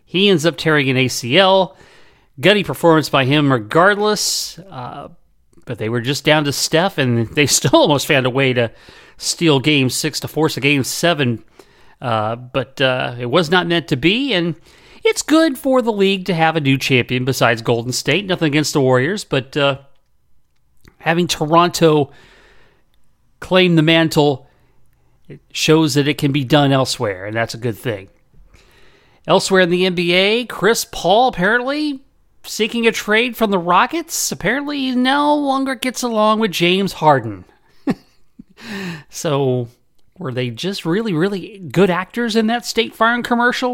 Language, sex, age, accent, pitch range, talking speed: English, male, 40-59, American, 135-200 Hz, 160 wpm